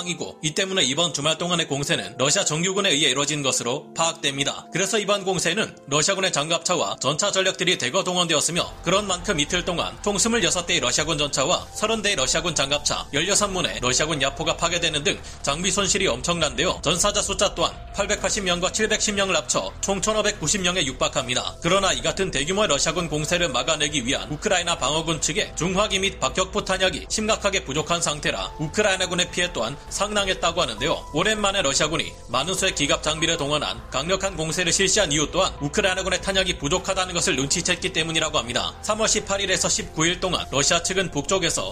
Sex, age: male, 30-49